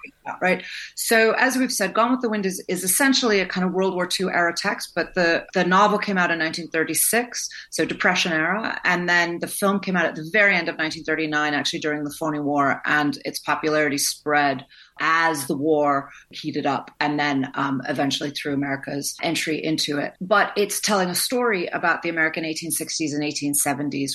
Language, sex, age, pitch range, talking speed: English, female, 30-49, 150-190 Hz, 205 wpm